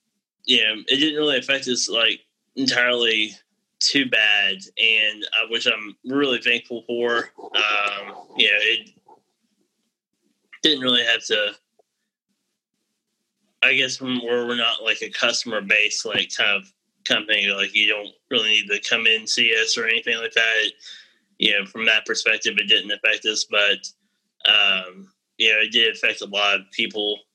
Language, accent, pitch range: English, American, 105-135 Hz